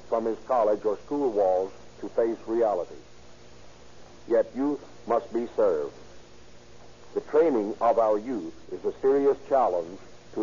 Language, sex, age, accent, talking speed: English, male, 60-79, American, 140 wpm